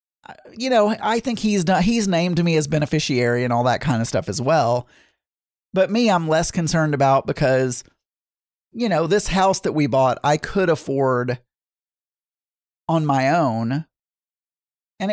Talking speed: 160 wpm